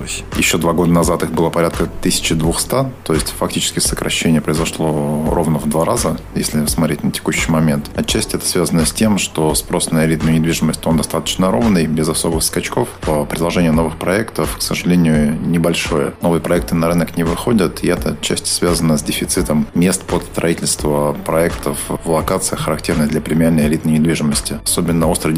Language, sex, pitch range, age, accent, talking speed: Russian, male, 75-85 Hz, 30-49, native, 165 wpm